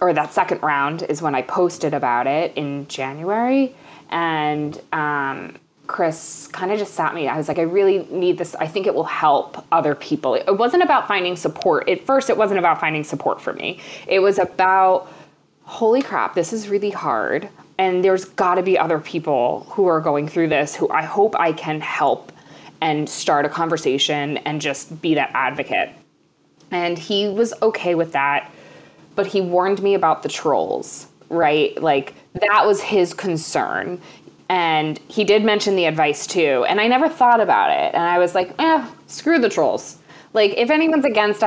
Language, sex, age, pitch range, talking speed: English, female, 20-39, 160-210 Hz, 185 wpm